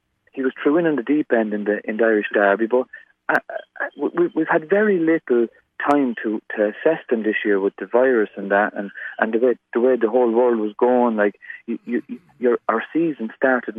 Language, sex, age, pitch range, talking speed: English, male, 40-59, 115-150 Hz, 220 wpm